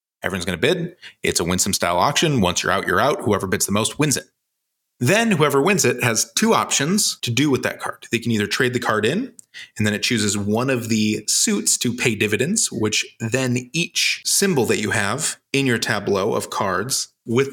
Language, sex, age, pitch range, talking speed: English, male, 30-49, 100-130 Hz, 215 wpm